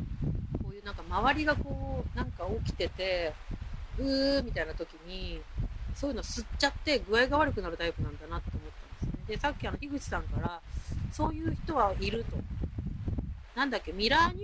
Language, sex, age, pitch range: Japanese, female, 40-59, 165-260 Hz